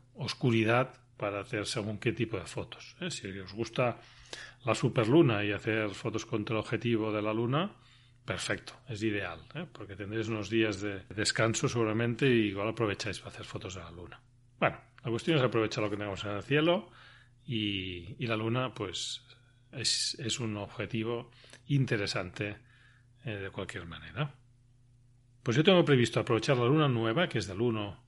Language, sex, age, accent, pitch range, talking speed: Spanish, male, 40-59, Spanish, 110-130 Hz, 165 wpm